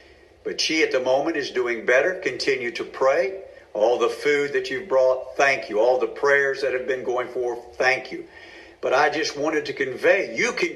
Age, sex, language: 60-79, male, English